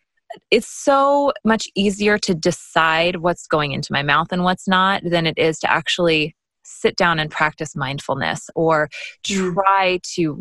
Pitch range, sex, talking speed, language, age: 160-215 Hz, female, 155 wpm, English, 20-39